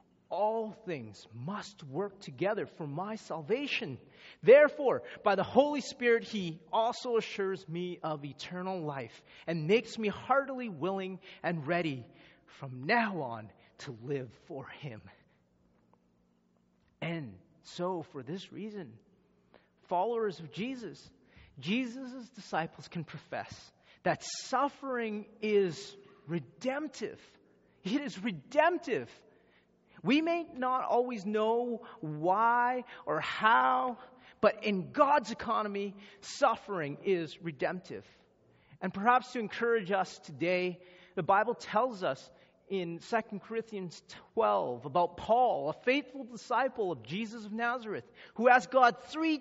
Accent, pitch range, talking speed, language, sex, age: American, 170-240 Hz, 115 wpm, English, male, 30-49